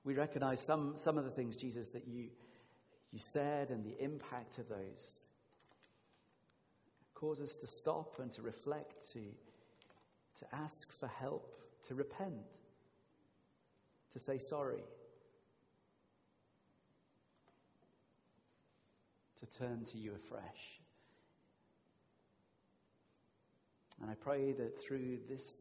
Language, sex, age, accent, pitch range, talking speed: English, male, 40-59, British, 115-155 Hz, 105 wpm